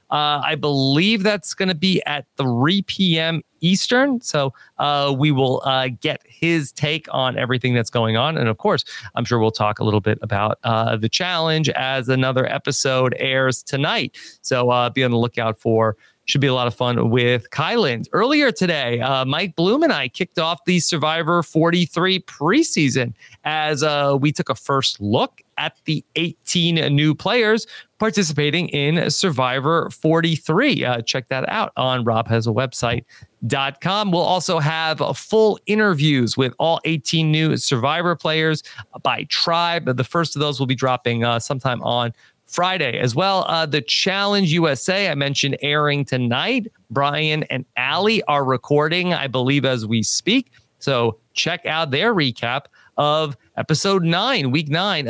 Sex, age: male, 30-49